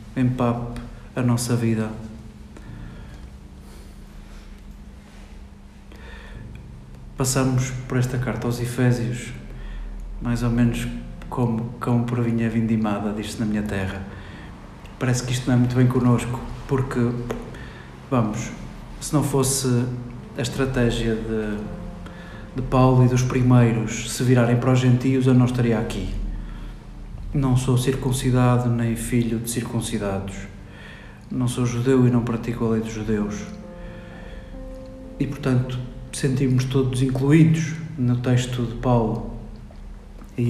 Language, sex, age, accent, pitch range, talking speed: Portuguese, male, 50-69, Portuguese, 110-130 Hz, 115 wpm